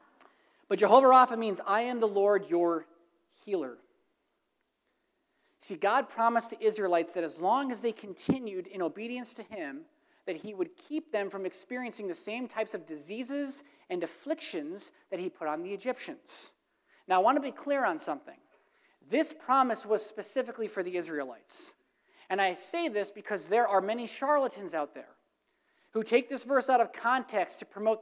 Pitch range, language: 200-275 Hz, English